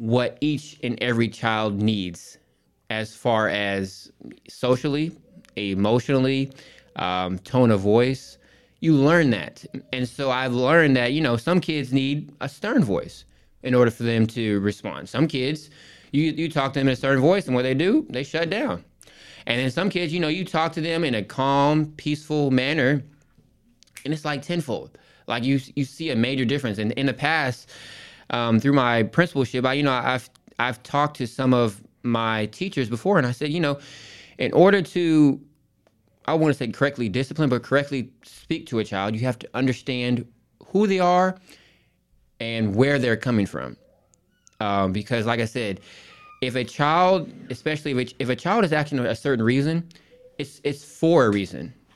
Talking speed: 180 wpm